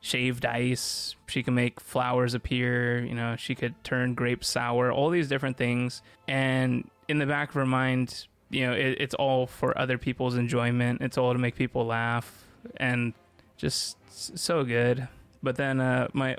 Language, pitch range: English, 120-130 Hz